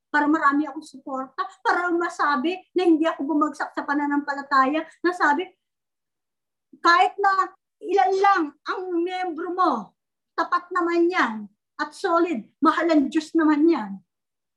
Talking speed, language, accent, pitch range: 125 wpm, English, Filipino, 255-335 Hz